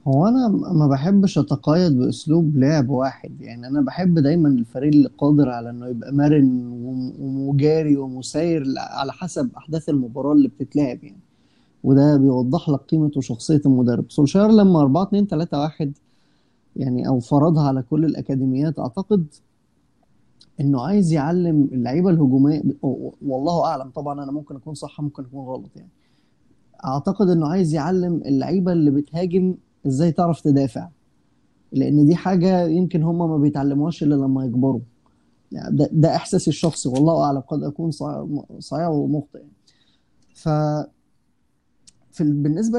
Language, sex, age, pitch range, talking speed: Arabic, male, 20-39, 140-170 Hz, 135 wpm